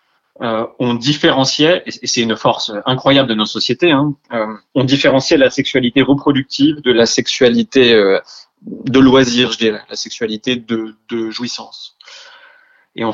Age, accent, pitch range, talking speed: 30-49, French, 115-140 Hz, 145 wpm